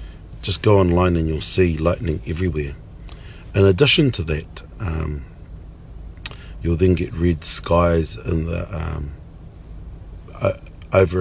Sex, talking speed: male, 125 wpm